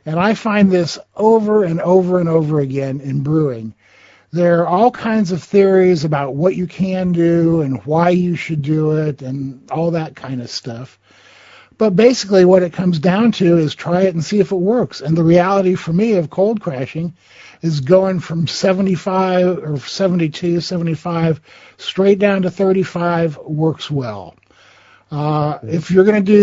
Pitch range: 150-185 Hz